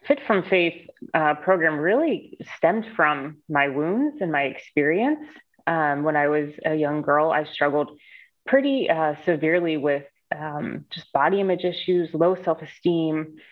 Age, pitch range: 30-49, 155-190 Hz